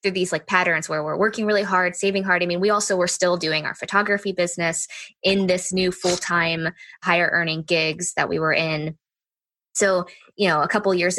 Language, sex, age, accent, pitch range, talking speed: English, female, 20-39, American, 160-190 Hz, 205 wpm